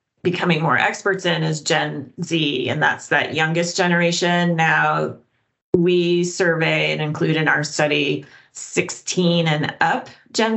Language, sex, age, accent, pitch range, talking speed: English, female, 30-49, American, 155-180 Hz, 135 wpm